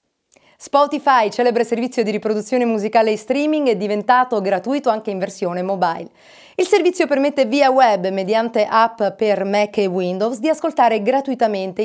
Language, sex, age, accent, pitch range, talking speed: Italian, female, 30-49, native, 195-260 Hz, 145 wpm